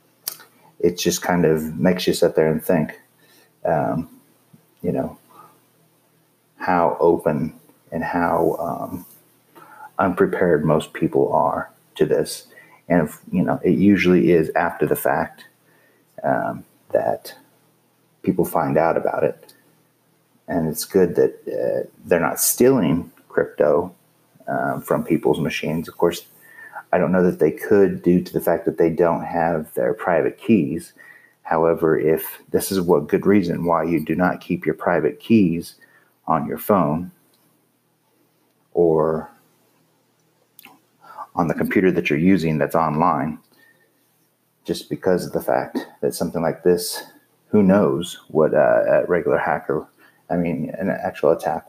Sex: male